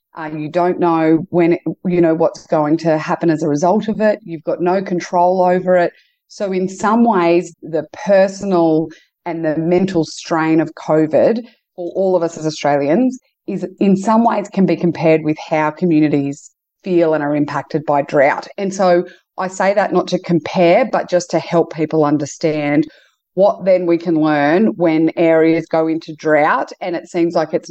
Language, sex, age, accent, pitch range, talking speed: English, female, 30-49, Australian, 155-180 Hz, 185 wpm